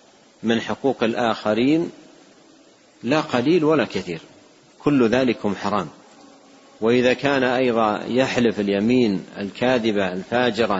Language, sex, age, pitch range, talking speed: Arabic, male, 50-69, 110-130 Hz, 95 wpm